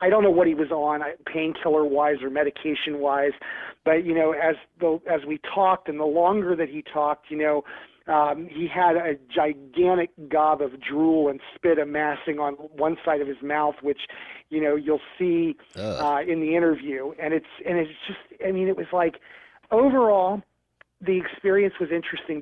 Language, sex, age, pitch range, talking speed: English, male, 40-59, 150-180 Hz, 180 wpm